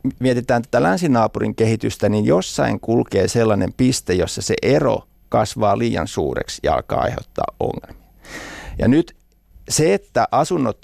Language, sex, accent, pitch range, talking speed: Finnish, male, native, 90-120 Hz, 135 wpm